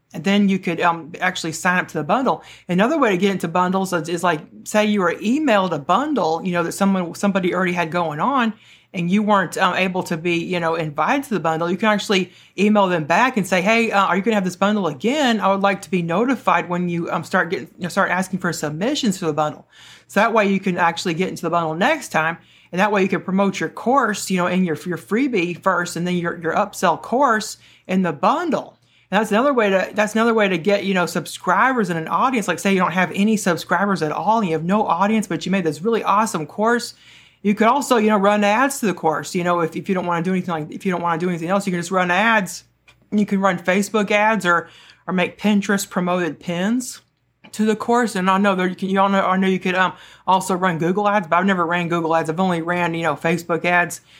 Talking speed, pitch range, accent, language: 260 wpm, 170-205 Hz, American, English